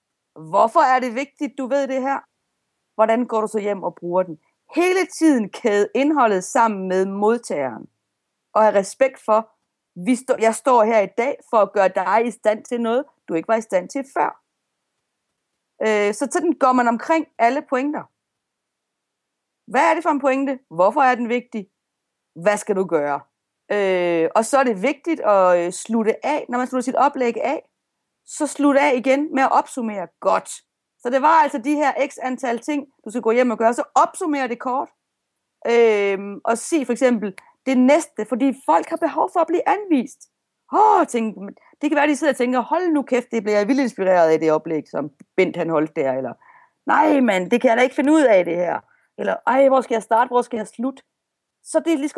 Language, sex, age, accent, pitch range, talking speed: Danish, female, 30-49, native, 215-285 Hz, 205 wpm